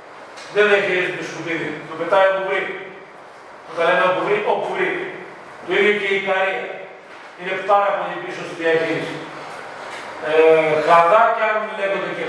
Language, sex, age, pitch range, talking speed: Greek, male, 40-59, 180-215 Hz, 150 wpm